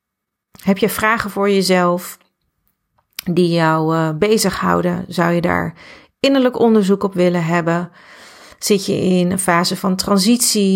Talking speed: 135 wpm